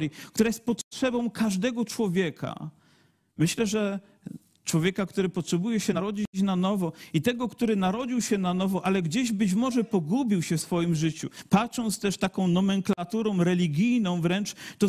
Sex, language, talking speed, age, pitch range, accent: male, Polish, 150 wpm, 40-59, 180-230 Hz, native